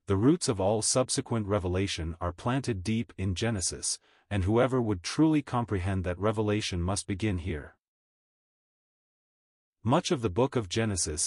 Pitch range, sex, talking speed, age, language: 90-115 Hz, male, 145 wpm, 40-59, English